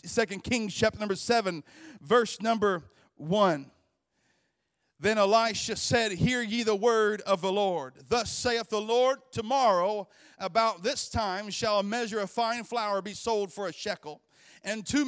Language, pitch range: English, 205-250 Hz